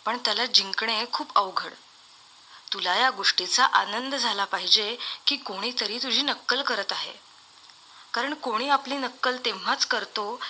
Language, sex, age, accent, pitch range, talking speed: Marathi, female, 20-39, native, 210-260 Hz, 130 wpm